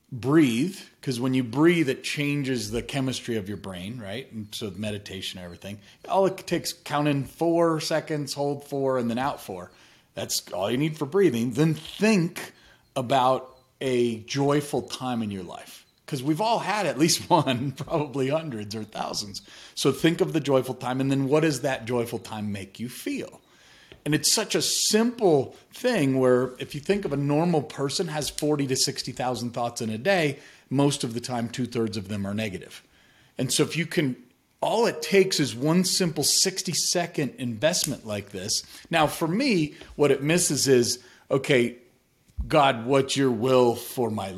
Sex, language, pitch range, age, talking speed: male, English, 120-155 Hz, 40-59, 180 wpm